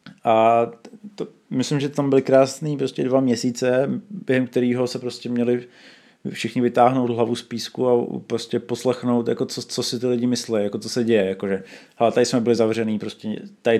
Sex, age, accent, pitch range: male, 20-39, native, 110-130 Hz